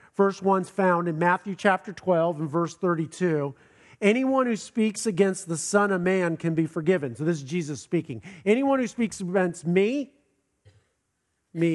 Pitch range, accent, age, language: 160-205 Hz, American, 50-69, English